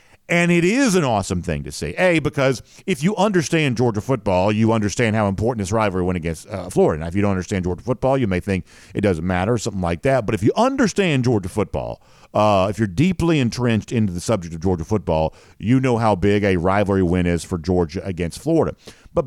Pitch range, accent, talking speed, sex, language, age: 100-155 Hz, American, 225 wpm, male, English, 50-69